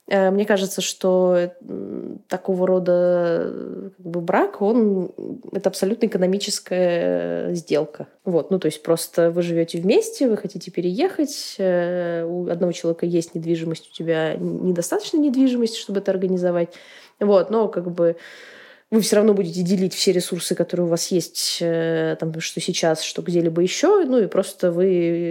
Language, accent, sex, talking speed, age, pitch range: Russian, native, female, 145 wpm, 20-39, 170-205 Hz